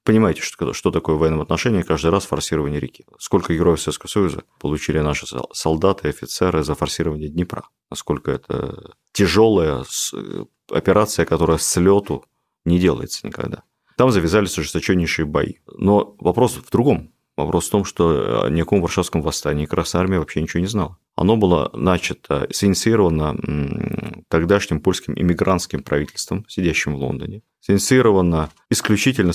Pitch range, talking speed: 80-100 Hz, 135 wpm